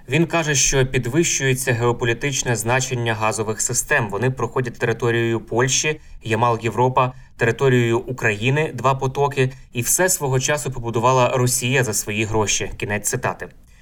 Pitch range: 110-135 Hz